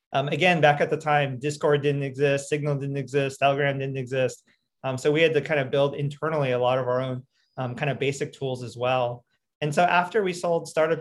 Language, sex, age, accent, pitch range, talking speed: English, male, 30-49, American, 135-165 Hz, 230 wpm